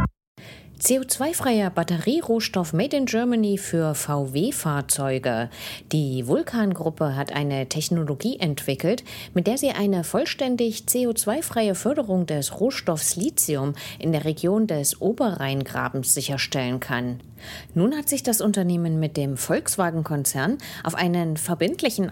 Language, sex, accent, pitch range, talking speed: English, female, German, 145-215 Hz, 110 wpm